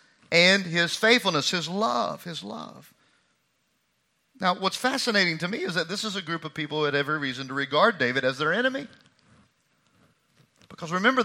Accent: American